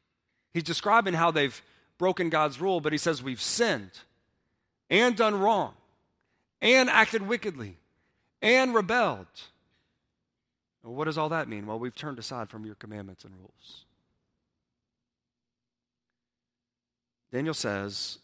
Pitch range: 110-155 Hz